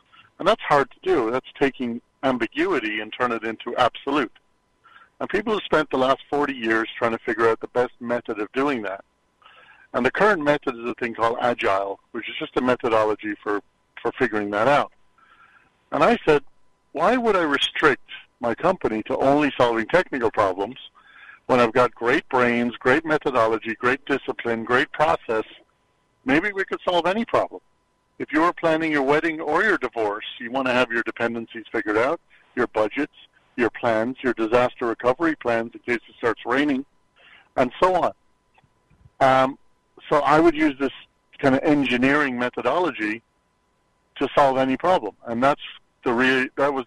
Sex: male